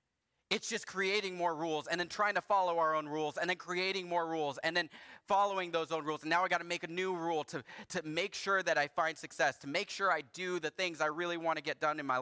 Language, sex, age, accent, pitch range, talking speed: English, male, 30-49, American, 120-175 Hz, 275 wpm